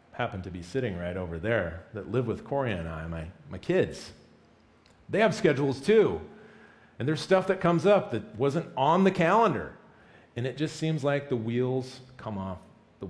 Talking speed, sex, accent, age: 190 wpm, male, American, 40-59